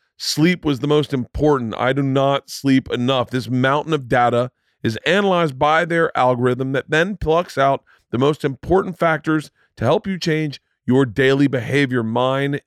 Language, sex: English, male